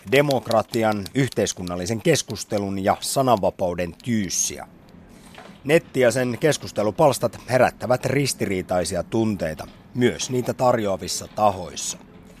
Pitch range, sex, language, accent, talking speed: 100-140 Hz, male, Finnish, native, 75 wpm